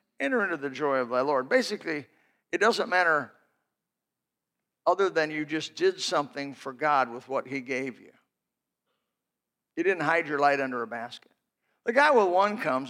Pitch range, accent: 140-180 Hz, American